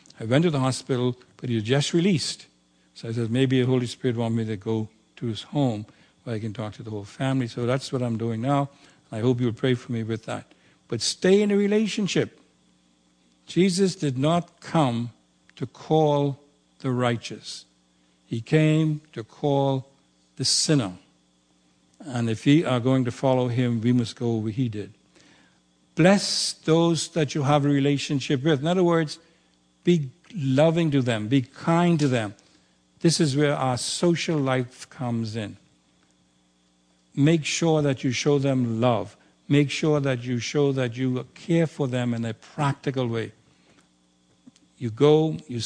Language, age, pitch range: English, 60-79, 110-155 Hz